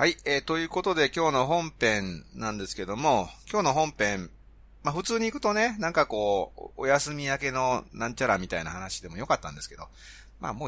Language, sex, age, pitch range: Japanese, male, 30-49, 90-150 Hz